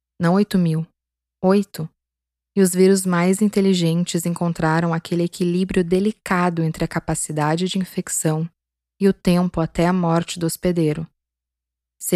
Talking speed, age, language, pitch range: 135 wpm, 20-39, Portuguese, 160-185 Hz